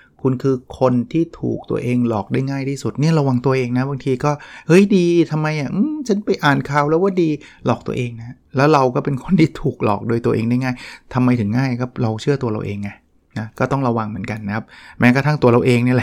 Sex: male